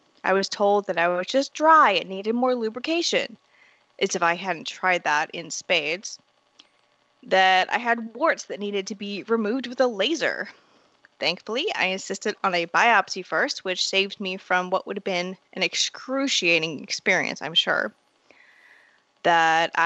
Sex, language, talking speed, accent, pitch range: female, English, 160 wpm, American, 190-250 Hz